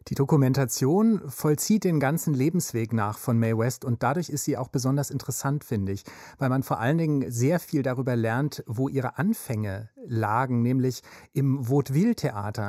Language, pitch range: German, 120-150 Hz